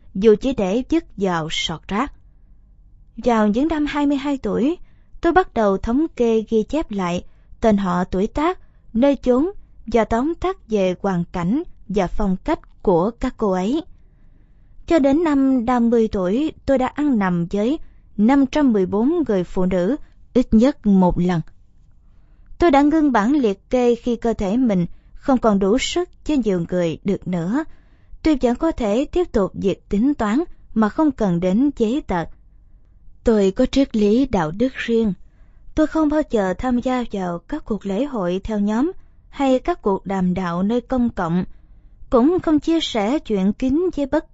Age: 20-39